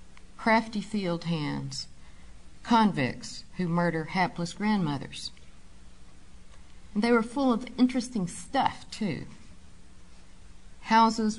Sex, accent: female, American